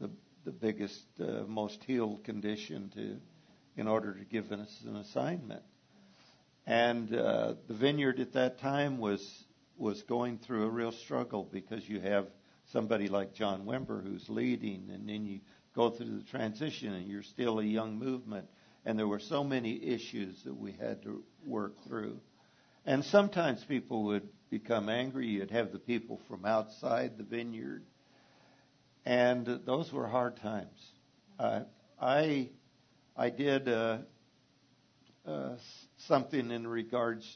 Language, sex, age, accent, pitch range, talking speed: English, male, 60-79, American, 105-125 Hz, 145 wpm